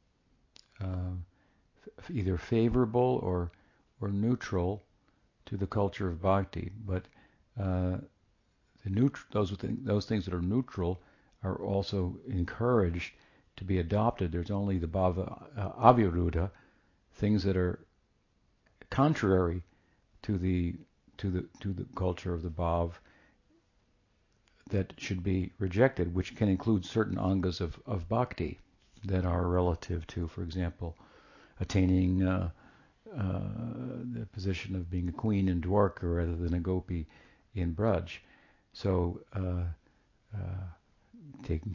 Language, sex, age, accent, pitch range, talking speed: English, male, 60-79, American, 90-105 Hz, 125 wpm